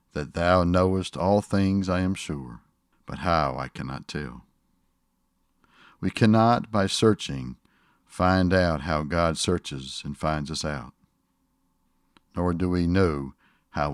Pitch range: 75-95 Hz